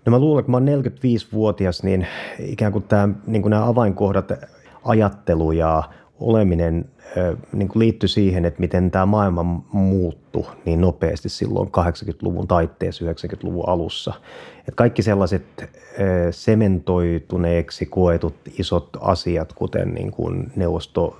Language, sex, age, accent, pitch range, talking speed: Finnish, male, 30-49, native, 85-100 Hz, 125 wpm